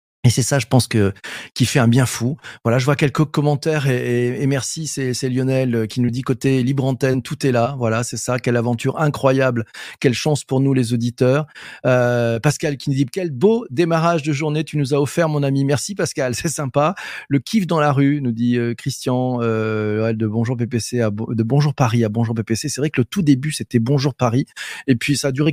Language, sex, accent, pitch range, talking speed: French, male, French, 120-155 Hz, 230 wpm